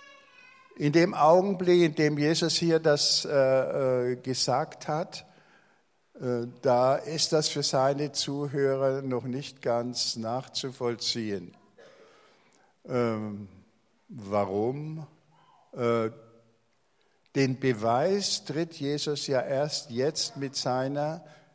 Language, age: German, 60-79